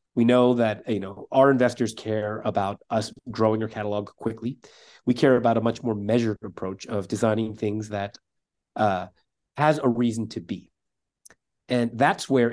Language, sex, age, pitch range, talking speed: English, male, 30-49, 105-125 Hz, 170 wpm